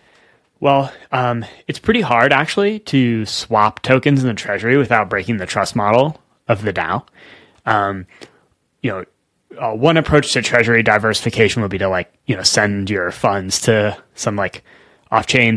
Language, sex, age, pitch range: English, male, 20-39, 100-125 Hz